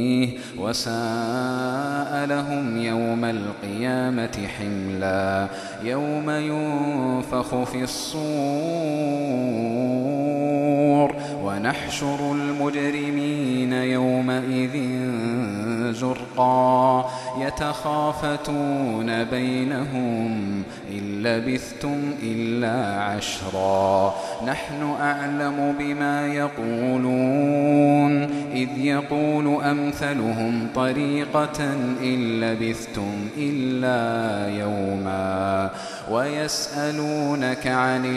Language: Arabic